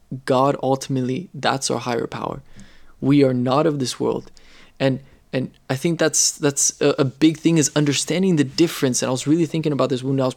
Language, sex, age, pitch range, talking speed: English, male, 20-39, 130-150 Hz, 210 wpm